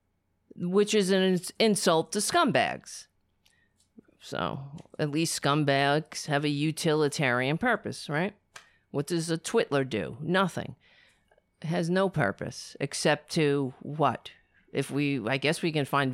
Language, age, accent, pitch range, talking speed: English, 40-59, American, 140-200 Hz, 125 wpm